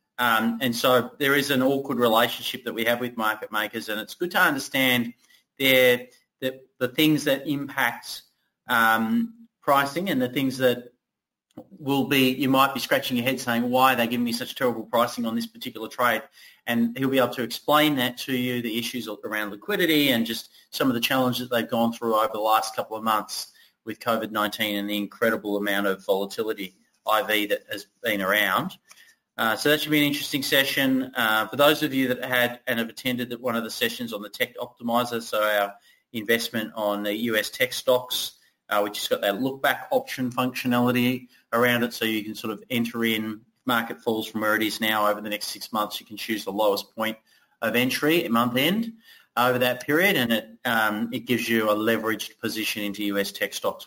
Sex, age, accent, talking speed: male, 30-49, Australian, 205 wpm